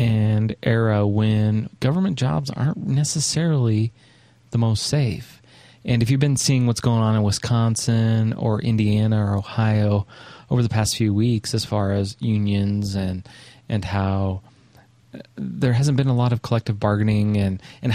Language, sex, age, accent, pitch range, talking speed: English, male, 30-49, American, 105-125 Hz, 155 wpm